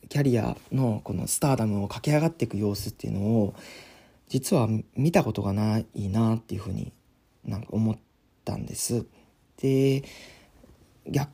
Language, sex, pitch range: Japanese, male, 105-130 Hz